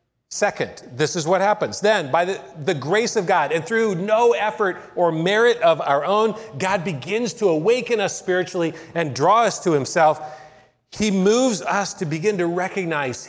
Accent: American